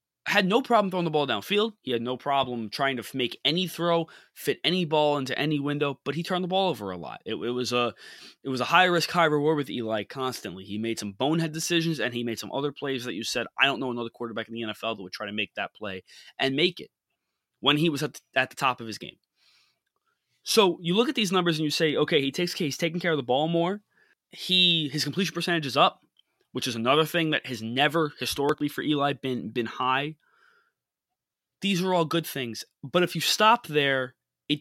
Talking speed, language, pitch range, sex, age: 235 wpm, English, 125-170 Hz, male, 20-39